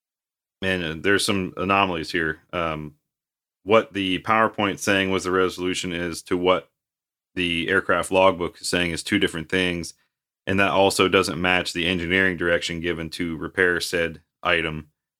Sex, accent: male, American